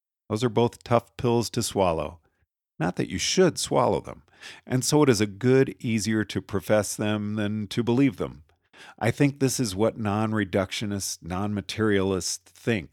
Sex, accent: male, American